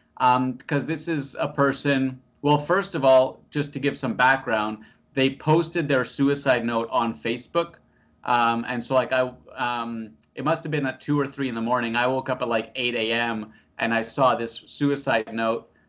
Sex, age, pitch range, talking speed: male, 30-49, 120-145 Hz, 190 wpm